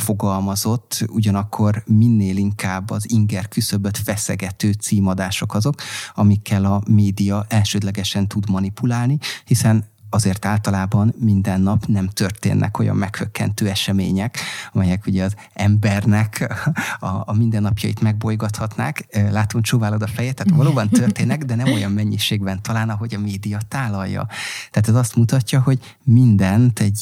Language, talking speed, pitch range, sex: Hungarian, 125 wpm, 100-115 Hz, male